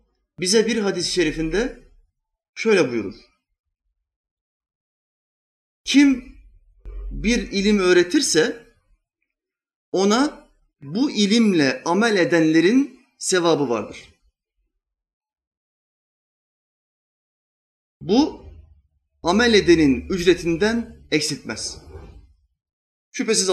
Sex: male